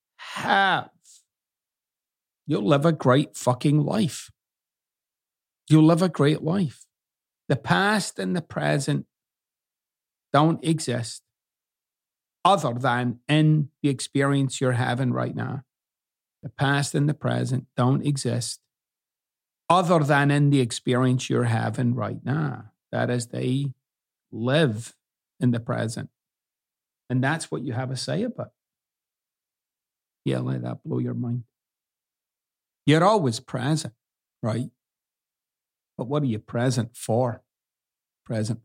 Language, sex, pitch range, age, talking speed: English, male, 120-155 Hz, 40-59, 120 wpm